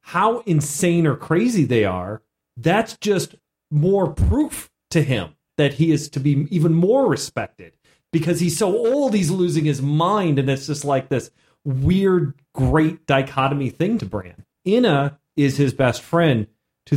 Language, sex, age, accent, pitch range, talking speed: English, male, 30-49, American, 125-175 Hz, 160 wpm